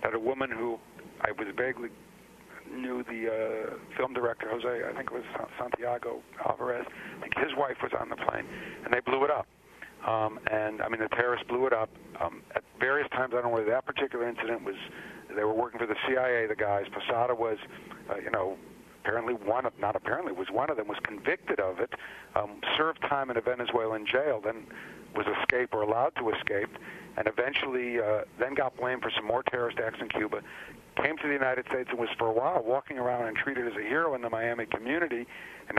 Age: 50-69